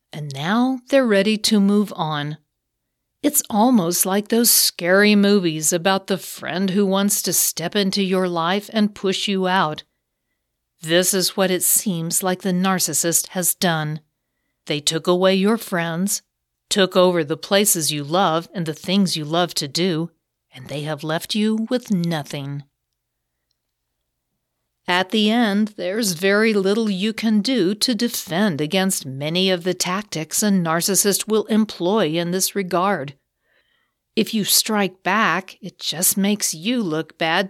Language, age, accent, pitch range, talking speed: English, 50-69, American, 165-205 Hz, 150 wpm